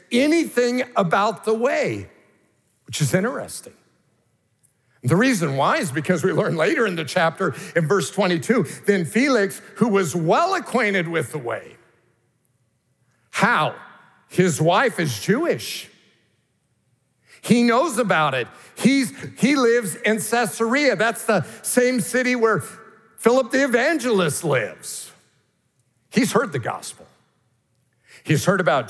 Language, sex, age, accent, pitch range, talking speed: English, male, 50-69, American, 125-200 Hz, 125 wpm